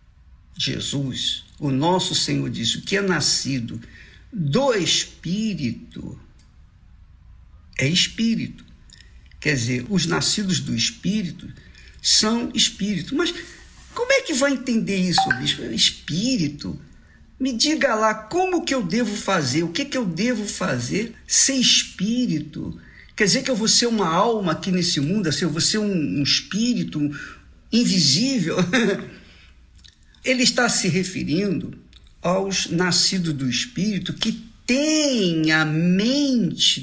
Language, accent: Portuguese, Brazilian